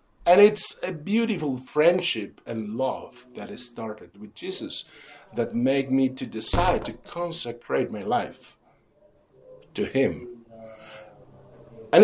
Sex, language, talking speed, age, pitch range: male, Italian, 120 wpm, 50-69, 115-175 Hz